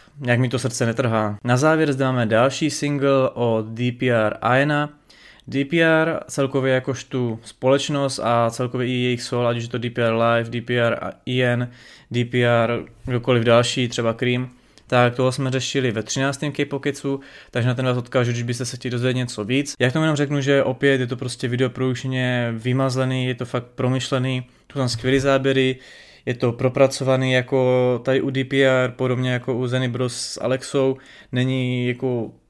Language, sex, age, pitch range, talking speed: Czech, male, 20-39, 120-130 Hz, 160 wpm